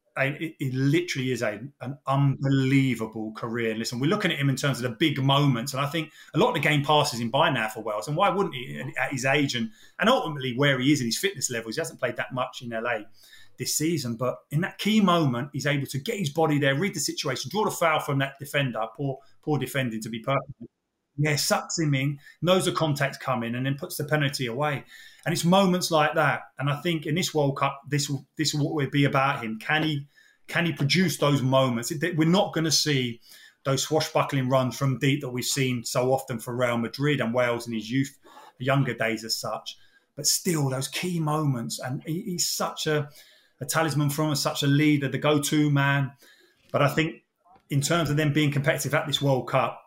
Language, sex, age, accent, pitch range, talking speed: English, male, 30-49, British, 125-155 Hz, 225 wpm